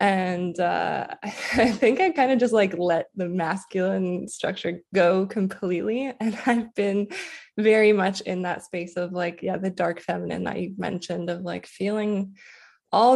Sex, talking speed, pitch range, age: female, 165 wpm, 180-215 Hz, 20-39